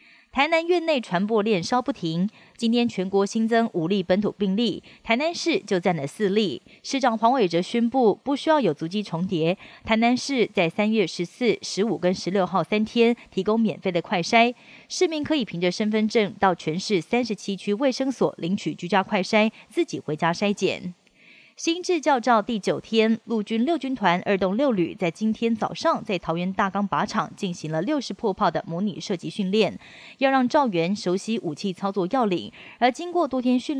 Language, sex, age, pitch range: Chinese, female, 20-39, 185-235 Hz